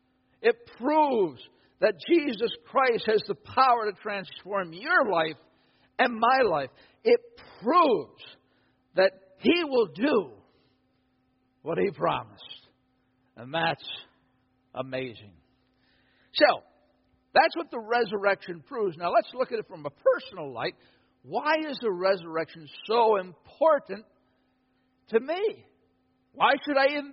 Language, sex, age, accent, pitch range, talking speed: English, male, 60-79, American, 130-195 Hz, 120 wpm